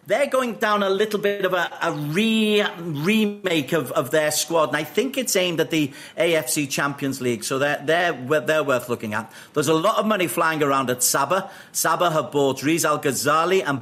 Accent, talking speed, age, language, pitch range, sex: British, 205 wpm, 50-69, English, 135-170 Hz, male